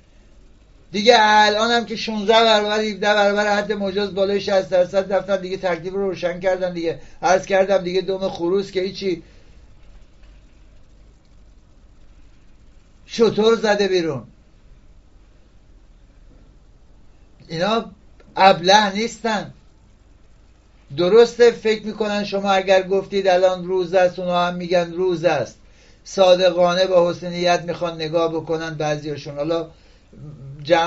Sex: male